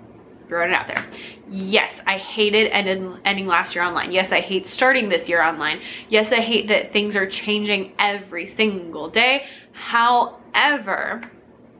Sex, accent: female, American